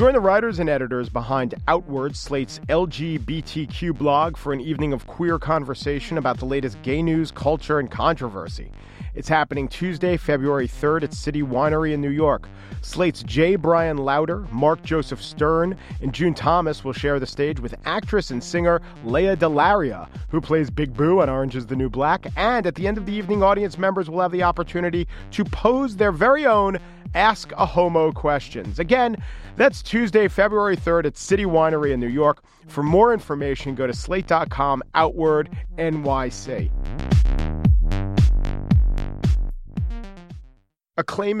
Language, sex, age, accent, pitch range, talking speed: English, male, 40-59, American, 130-175 Hz, 155 wpm